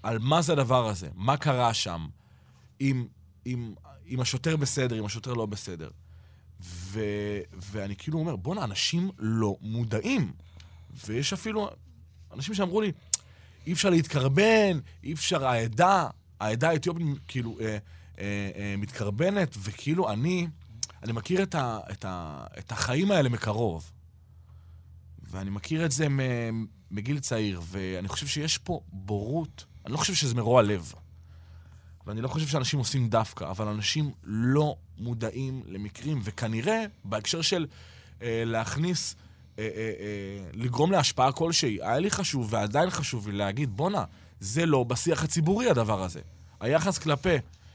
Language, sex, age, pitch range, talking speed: Hebrew, male, 30-49, 100-155 Hz, 135 wpm